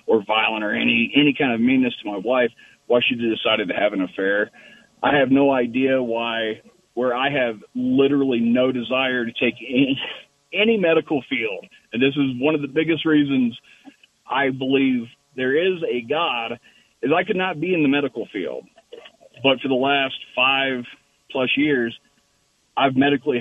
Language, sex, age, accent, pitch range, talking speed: English, male, 40-59, American, 125-160 Hz, 170 wpm